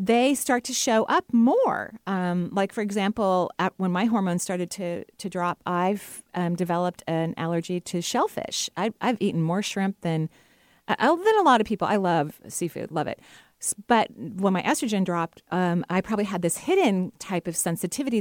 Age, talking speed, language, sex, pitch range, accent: 40-59, 185 wpm, English, female, 175-230 Hz, American